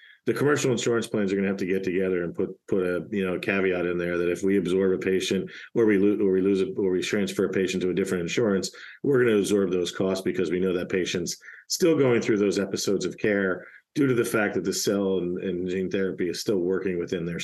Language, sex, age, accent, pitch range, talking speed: English, male, 40-59, American, 95-110 Hz, 265 wpm